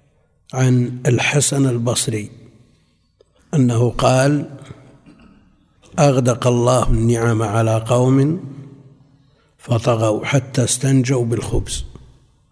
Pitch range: 115-140 Hz